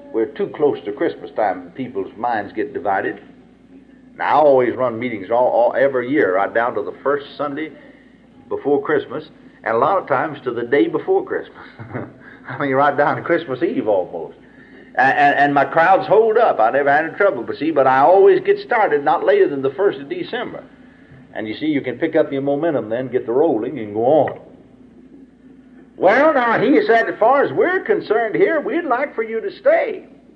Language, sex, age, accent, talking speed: English, male, 50-69, American, 205 wpm